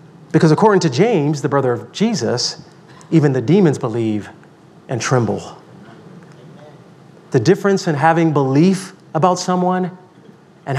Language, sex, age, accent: English, male, 40-59, American